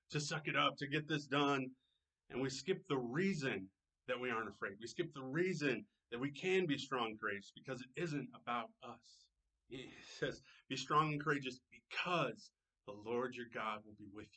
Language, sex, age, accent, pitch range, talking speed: English, male, 30-49, American, 115-140 Hz, 190 wpm